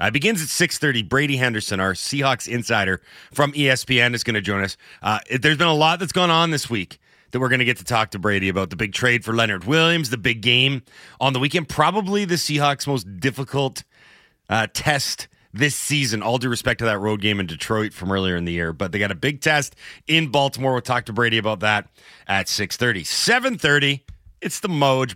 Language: English